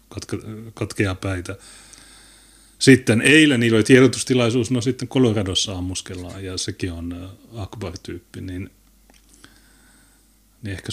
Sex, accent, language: male, native, Finnish